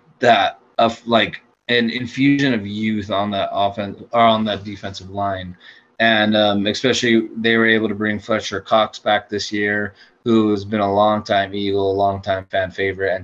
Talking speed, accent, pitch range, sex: 175 wpm, American, 100-110 Hz, male